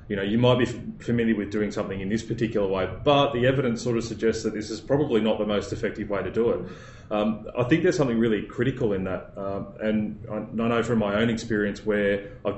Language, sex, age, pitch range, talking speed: English, male, 20-39, 100-115 Hz, 245 wpm